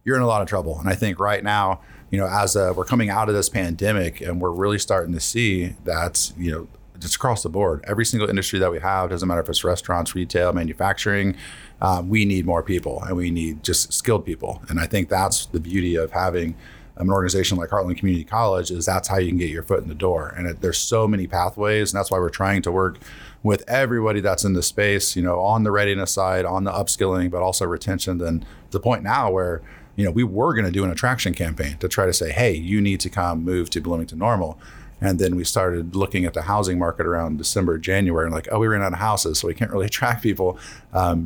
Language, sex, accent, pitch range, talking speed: English, male, American, 85-105 Hz, 245 wpm